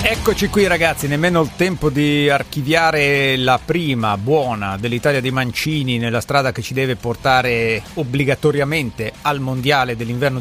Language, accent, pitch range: Italian, native, 120-145 Hz